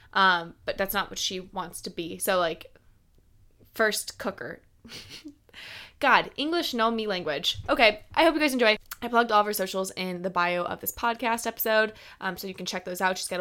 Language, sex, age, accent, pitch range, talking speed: English, female, 20-39, American, 180-215 Hz, 205 wpm